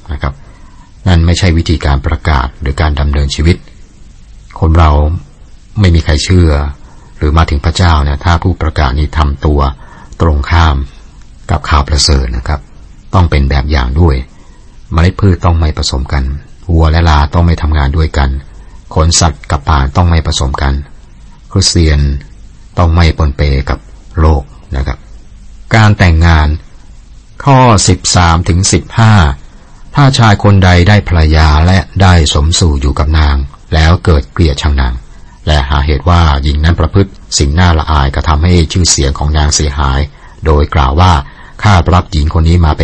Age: 60-79